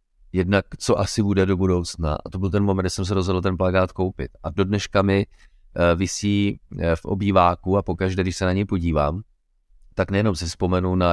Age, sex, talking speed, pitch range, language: 30-49, male, 200 wpm, 90-105 Hz, Czech